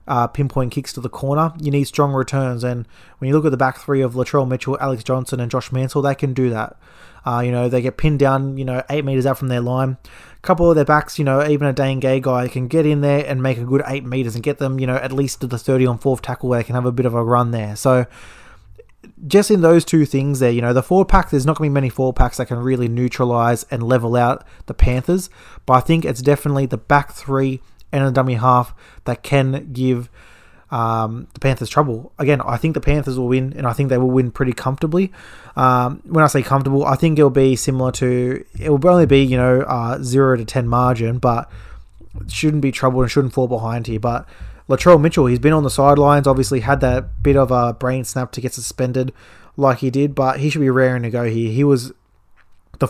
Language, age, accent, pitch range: English, 20-39, Australian, 125-140 Hz